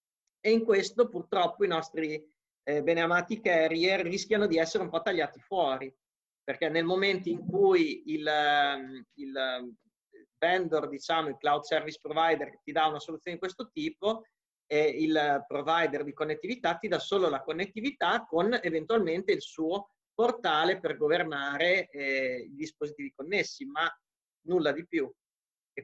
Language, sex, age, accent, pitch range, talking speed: Italian, male, 30-49, native, 145-200 Hz, 135 wpm